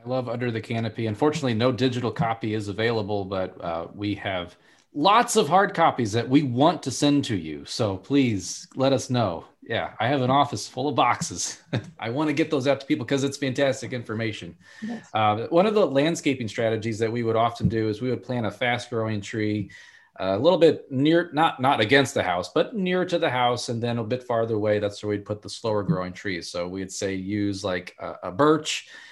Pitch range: 105-135 Hz